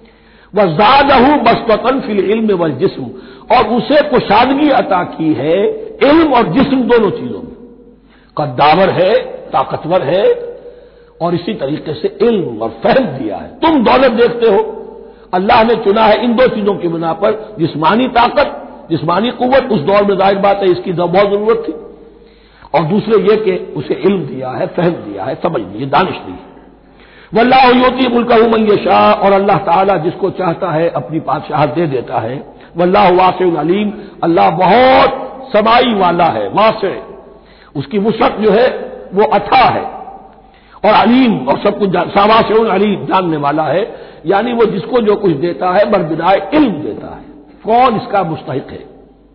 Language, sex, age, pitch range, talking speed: Hindi, male, 60-79, 185-255 Hz, 160 wpm